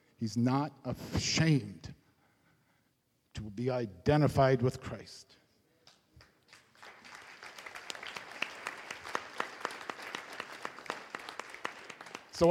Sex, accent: male, American